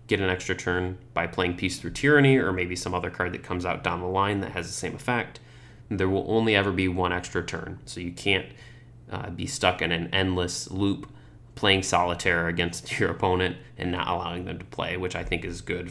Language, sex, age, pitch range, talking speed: English, male, 20-39, 90-120 Hz, 225 wpm